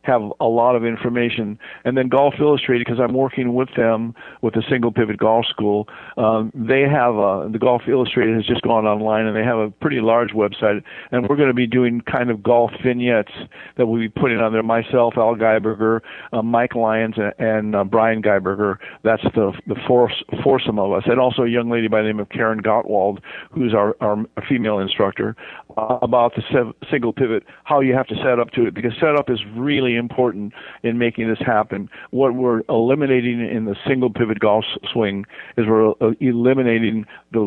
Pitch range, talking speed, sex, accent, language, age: 110-125 Hz, 195 wpm, male, American, English, 50-69